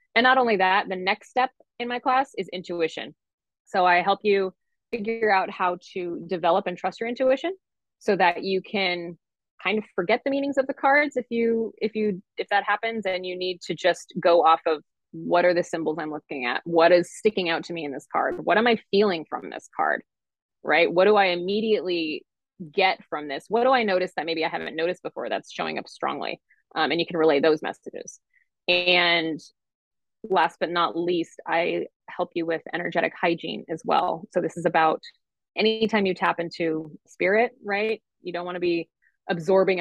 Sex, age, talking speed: female, 20-39, 200 wpm